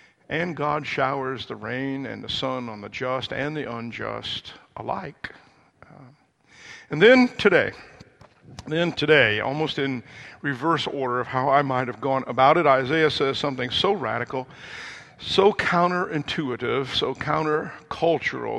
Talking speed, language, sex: 140 wpm, English, male